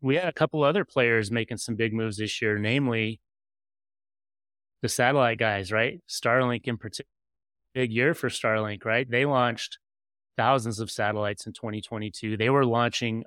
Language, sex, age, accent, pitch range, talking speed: English, male, 30-49, American, 105-125 Hz, 160 wpm